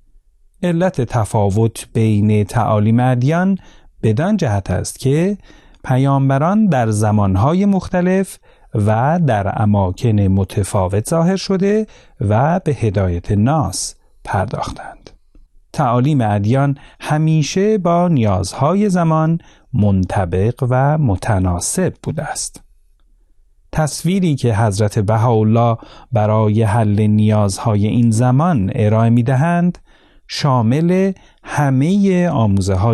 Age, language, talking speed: 40-59, Persian, 90 wpm